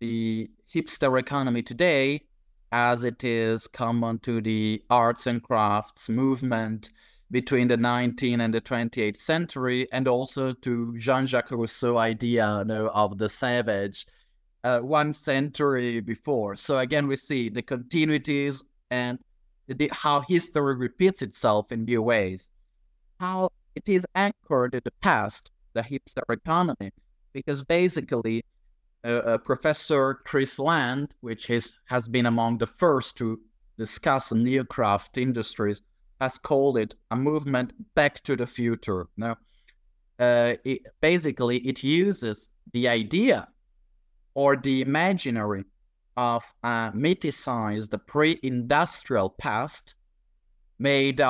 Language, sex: English, male